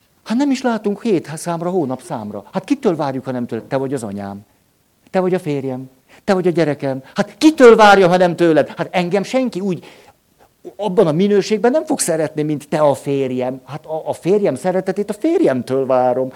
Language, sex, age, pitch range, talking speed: Hungarian, male, 60-79, 130-180 Hz, 200 wpm